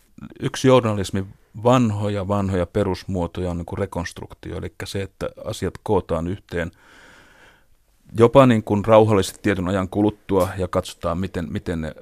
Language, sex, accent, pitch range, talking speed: Finnish, male, native, 85-100 Hz, 130 wpm